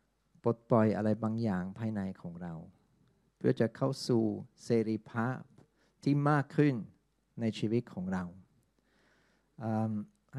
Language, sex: Thai, male